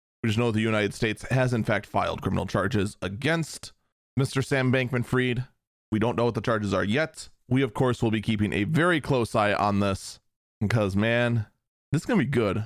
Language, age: English, 30-49